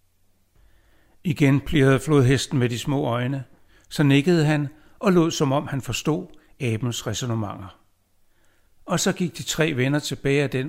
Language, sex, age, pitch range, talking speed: Danish, male, 60-79, 95-145 Hz, 150 wpm